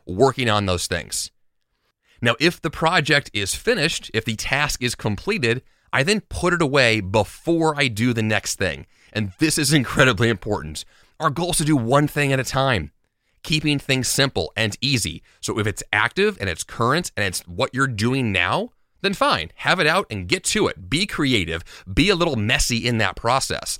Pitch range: 105-150 Hz